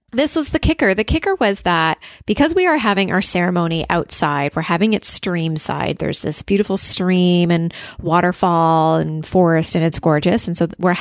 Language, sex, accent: English, female, American